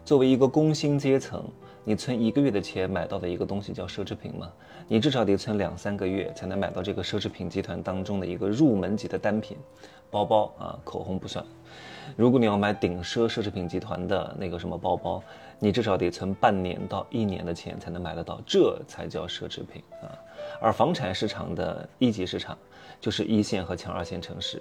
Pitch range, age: 95-115 Hz, 20-39